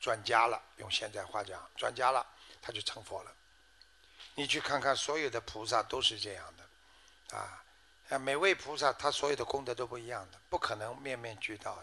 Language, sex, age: Chinese, male, 60-79